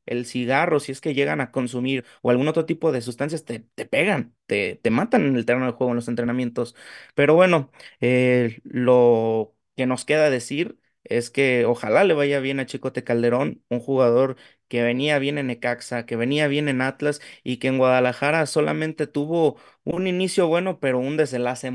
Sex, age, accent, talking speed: male, 30-49, Mexican, 190 wpm